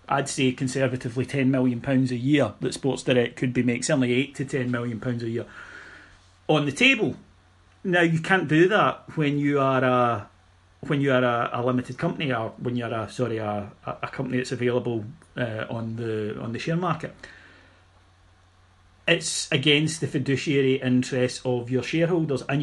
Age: 30-49